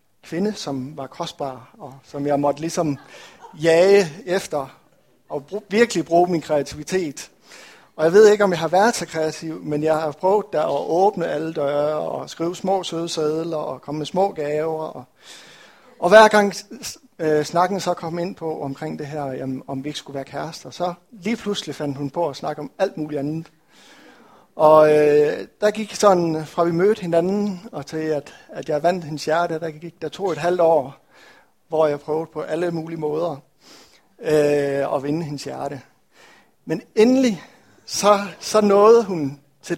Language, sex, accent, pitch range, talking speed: Danish, male, native, 145-180 Hz, 185 wpm